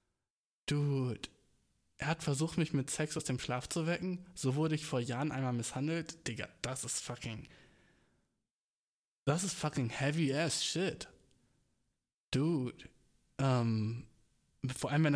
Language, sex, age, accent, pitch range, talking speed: German, male, 20-39, German, 125-155 Hz, 125 wpm